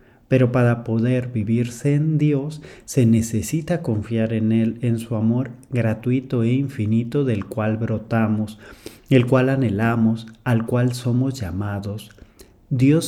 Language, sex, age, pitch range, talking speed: English, male, 40-59, 110-135 Hz, 130 wpm